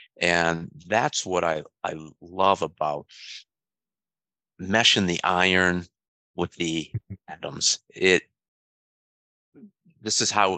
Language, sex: English, male